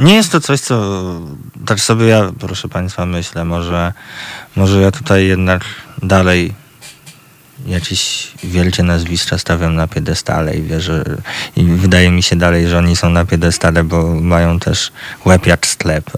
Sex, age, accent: male, 20-39, native